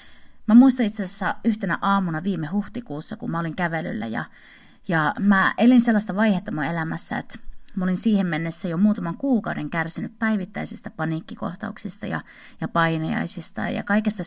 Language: Finnish